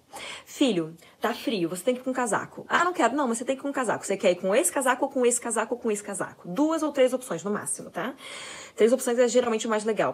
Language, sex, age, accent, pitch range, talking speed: Portuguese, female, 20-39, Brazilian, 205-275 Hz, 280 wpm